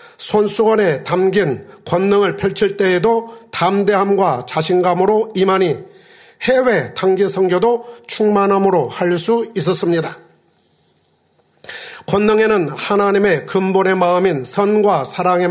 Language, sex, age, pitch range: Korean, male, 40-59, 180-215 Hz